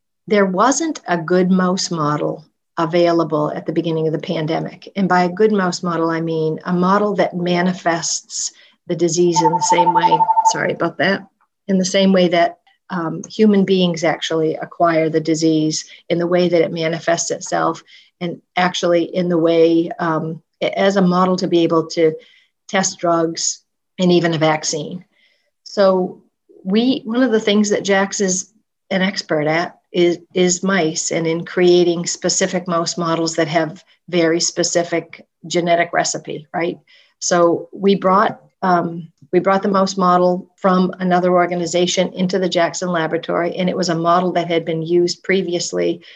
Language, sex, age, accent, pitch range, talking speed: English, female, 40-59, American, 165-190 Hz, 165 wpm